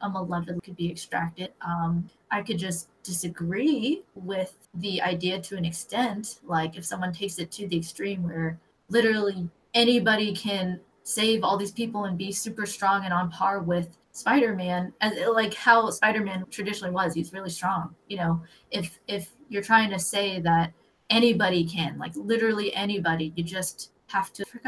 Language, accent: English, American